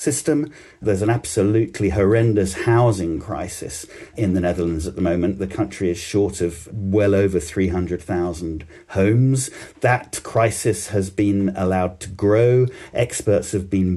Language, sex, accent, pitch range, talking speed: English, male, British, 95-115 Hz, 135 wpm